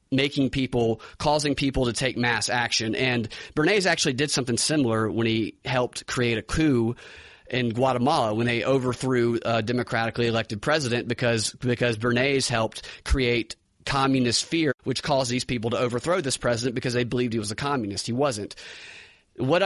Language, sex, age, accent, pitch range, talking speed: English, male, 30-49, American, 115-140 Hz, 170 wpm